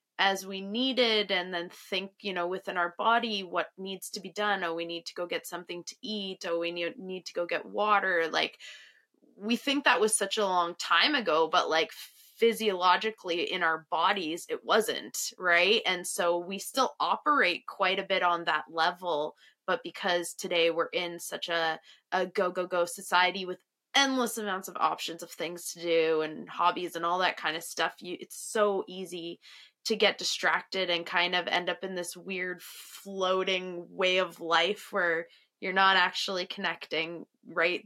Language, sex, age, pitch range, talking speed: English, female, 20-39, 170-195 Hz, 180 wpm